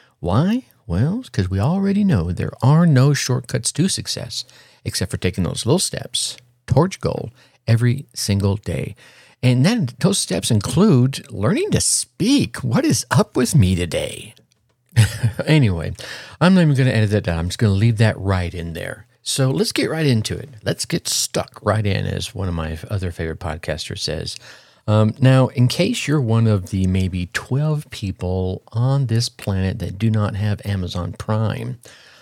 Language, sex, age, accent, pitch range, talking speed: English, male, 50-69, American, 95-130 Hz, 175 wpm